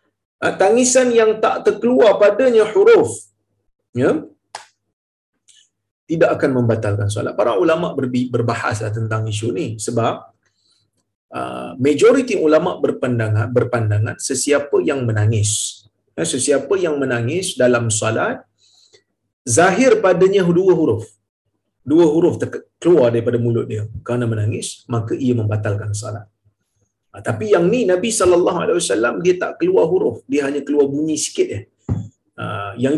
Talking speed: 120 wpm